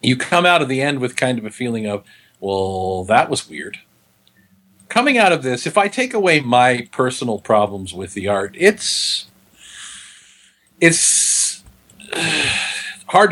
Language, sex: English, male